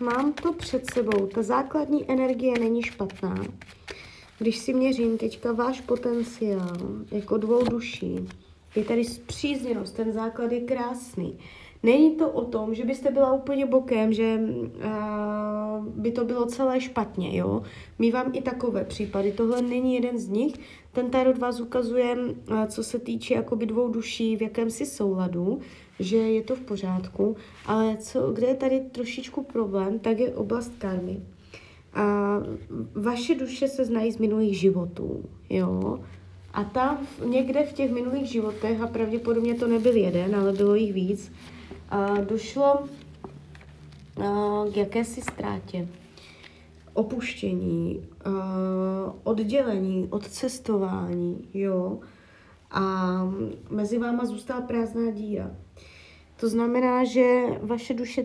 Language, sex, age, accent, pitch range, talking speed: Czech, female, 30-49, native, 195-245 Hz, 125 wpm